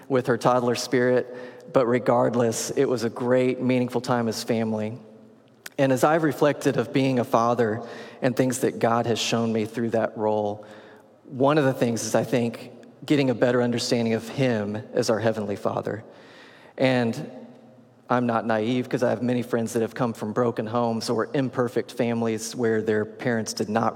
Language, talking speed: English, 180 wpm